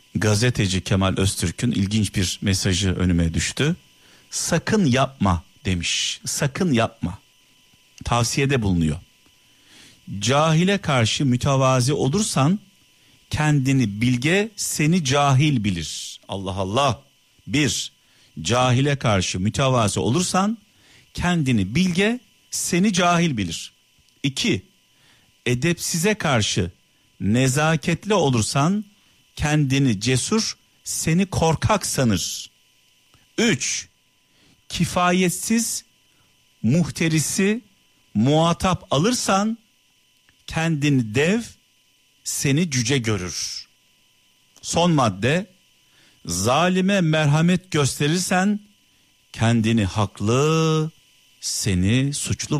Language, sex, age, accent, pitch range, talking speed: Turkish, male, 50-69, native, 110-170 Hz, 75 wpm